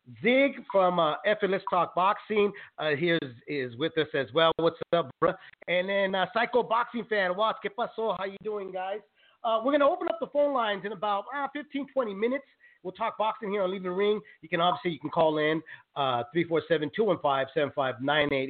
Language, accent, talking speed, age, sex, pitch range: English, American, 195 wpm, 30-49, male, 190-255 Hz